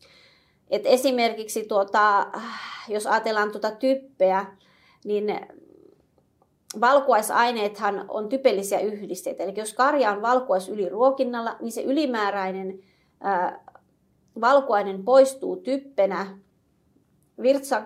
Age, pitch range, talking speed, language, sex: 30-49, 195-245 Hz, 85 wpm, Finnish, female